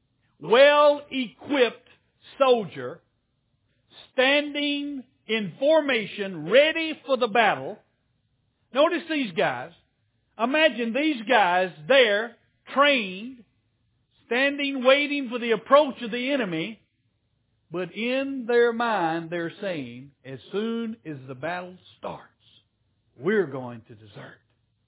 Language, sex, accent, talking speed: English, male, American, 100 wpm